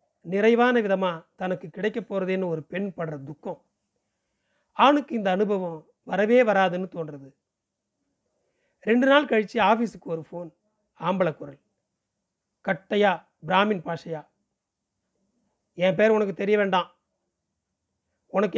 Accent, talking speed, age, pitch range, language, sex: native, 105 wpm, 40-59, 175-220 Hz, Tamil, male